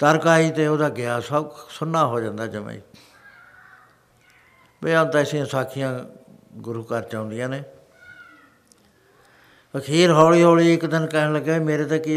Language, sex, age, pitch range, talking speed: Punjabi, male, 60-79, 130-155 Hz, 145 wpm